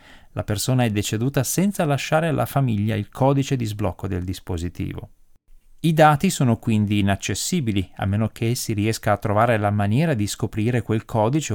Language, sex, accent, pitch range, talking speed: Italian, male, native, 100-150 Hz, 165 wpm